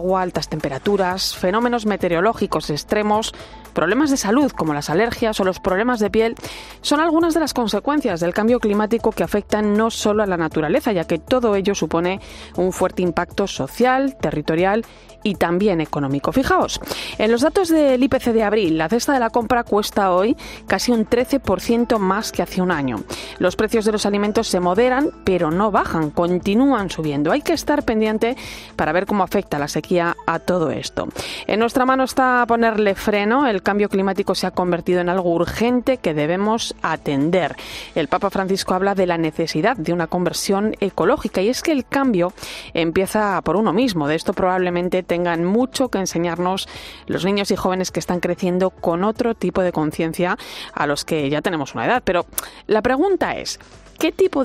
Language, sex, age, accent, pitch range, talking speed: Spanish, female, 30-49, Spanish, 175-235 Hz, 180 wpm